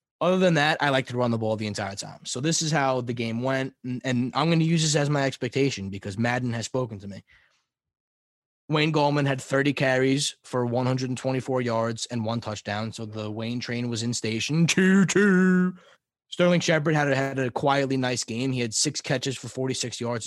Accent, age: American, 20-39